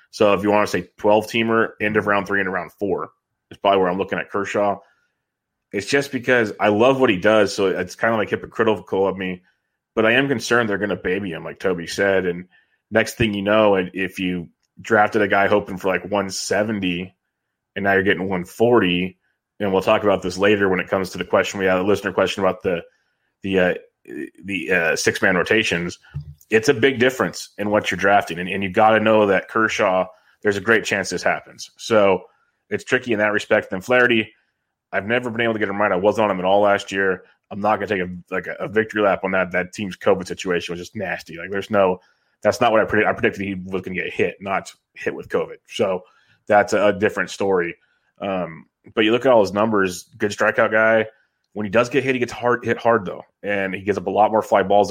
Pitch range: 95-115 Hz